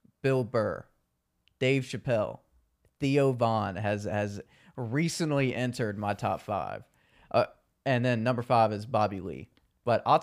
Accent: American